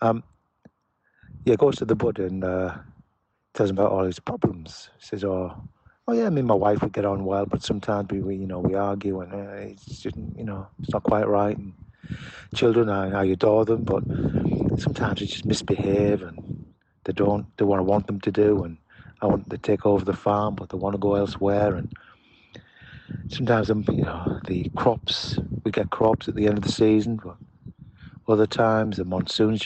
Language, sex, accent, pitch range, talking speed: English, male, British, 100-120 Hz, 200 wpm